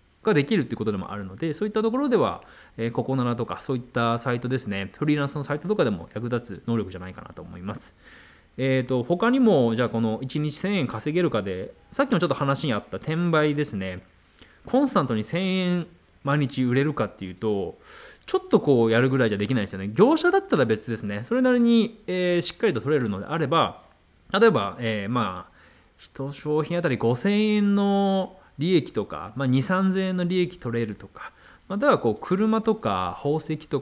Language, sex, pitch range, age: Japanese, male, 115-185 Hz, 20-39